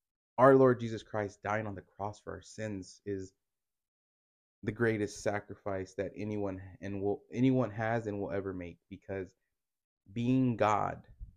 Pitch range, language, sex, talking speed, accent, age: 95-125 Hz, English, male, 150 wpm, American, 20-39